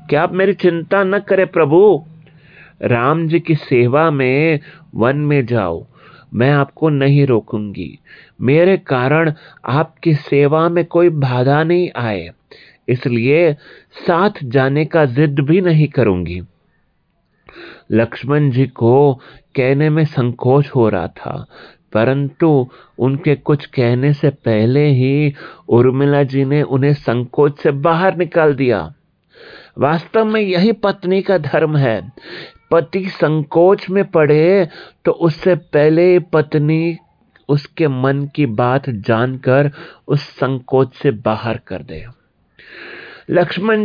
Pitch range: 135-175 Hz